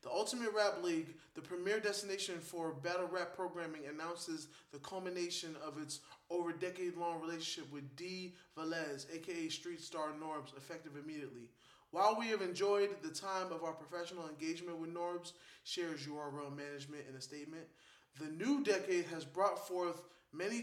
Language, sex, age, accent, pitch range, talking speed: English, male, 20-39, American, 160-190 Hz, 155 wpm